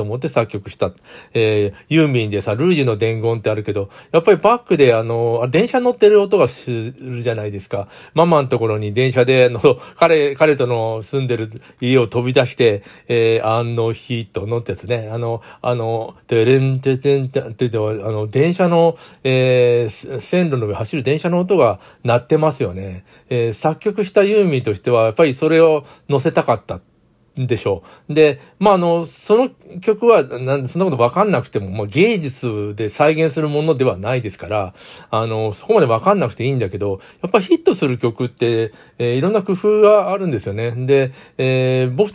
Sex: male